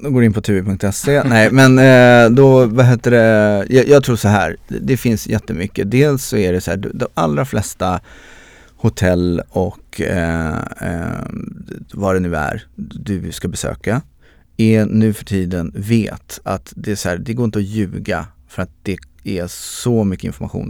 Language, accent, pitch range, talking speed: Swedish, native, 90-115 Hz, 170 wpm